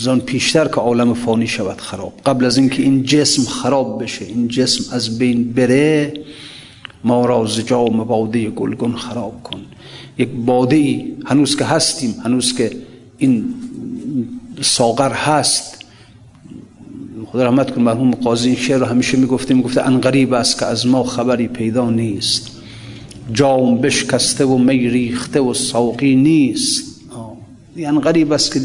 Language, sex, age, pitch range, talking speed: Persian, male, 50-69, 120-145 Hz, 140 wpm